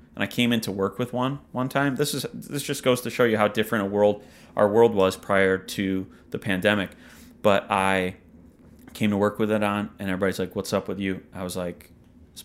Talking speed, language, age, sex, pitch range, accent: 230 wpm, English, 30-49, male, 95-110 Hz, American